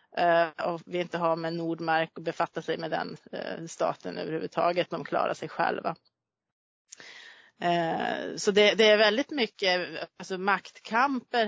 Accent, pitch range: native, 170-205 Hz